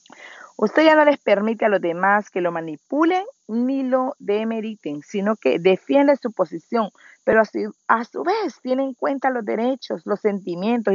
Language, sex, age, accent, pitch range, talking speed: Spanish, female, 40-59, American, 190-265 Hz, 170 wpm